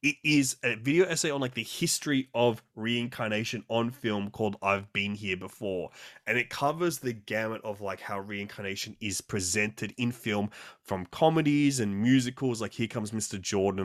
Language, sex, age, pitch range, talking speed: English, male, 20-39, 100-120 Hz, 175 wpm